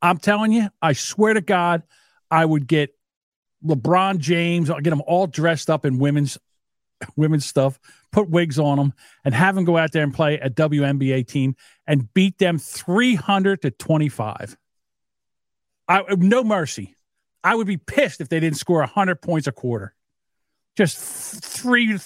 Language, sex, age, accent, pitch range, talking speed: English, male, 50-69, American, 140-190 Hz, 170 wpm